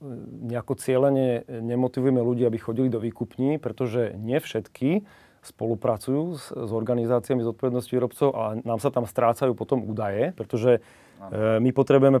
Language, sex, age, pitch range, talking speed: Slovak, male, 30-49, 115-135 Hz, 130 wpm